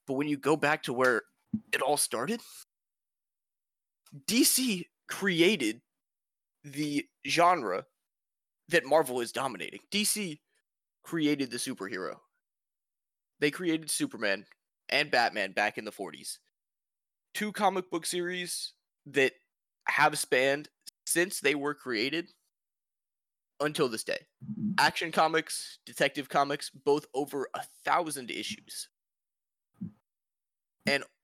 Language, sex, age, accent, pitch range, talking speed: English, male, 20-39, American, 140-180 Hz, 105 wpm